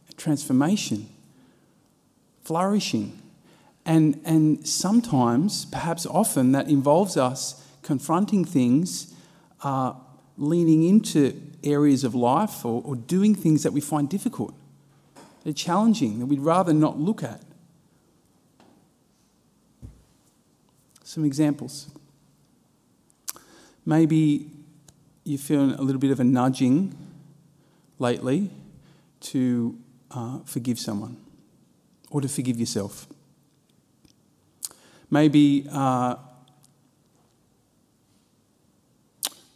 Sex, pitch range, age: male, 130-160 Hz, 40-59